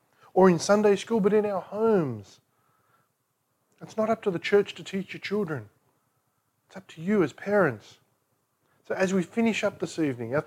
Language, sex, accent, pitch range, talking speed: English, male, Australian, 125-175 Hz, 185 wpm